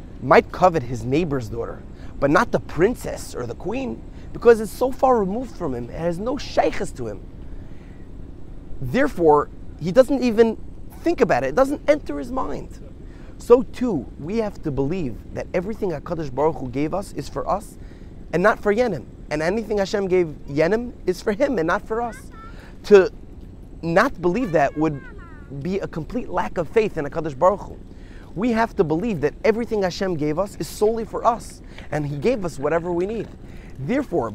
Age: 30-49